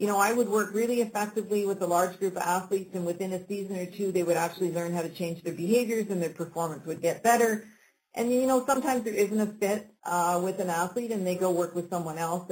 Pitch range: 175-215 Hz